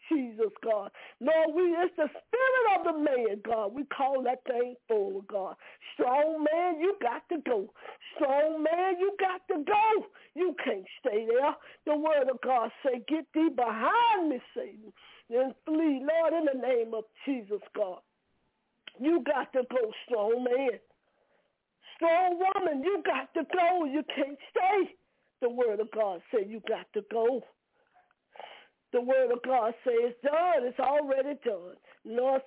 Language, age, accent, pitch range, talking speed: English, 50-69, American, 245-330 Hz, 160 wpm